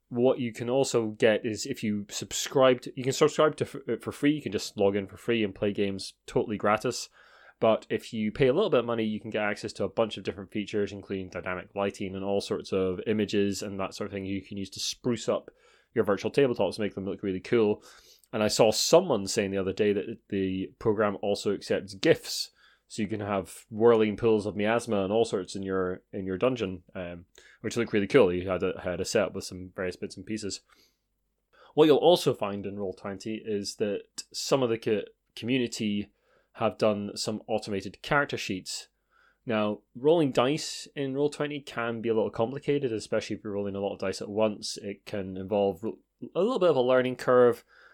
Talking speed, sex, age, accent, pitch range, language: 215 wpm, male, 20-39, British, 100-115 Hz, English